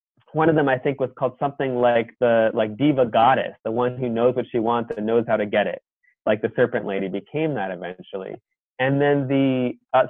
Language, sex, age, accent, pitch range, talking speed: English, male, 20-39, American, 110-135 Hz, 220 wpm